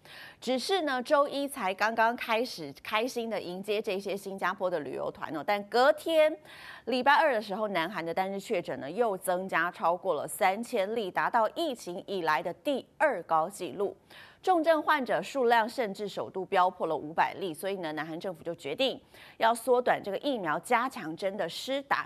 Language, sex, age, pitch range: Chinese, female, 30-49, 175-250 Hz